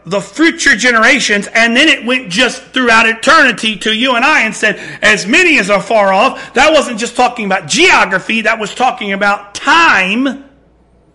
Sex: male